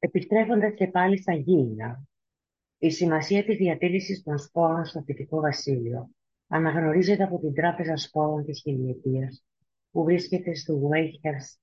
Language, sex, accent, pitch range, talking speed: Greek, female, native, 130-170 Hz, 130 wpm